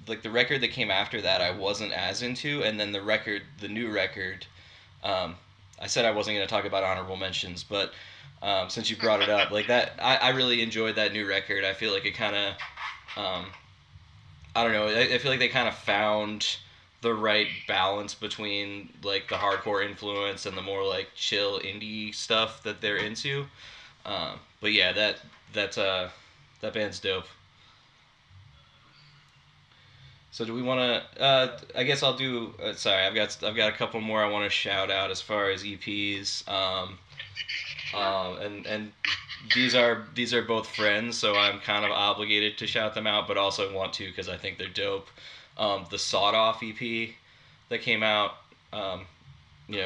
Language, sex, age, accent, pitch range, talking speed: English, male, 10-29, American, 95-110 Hz, 190 wpm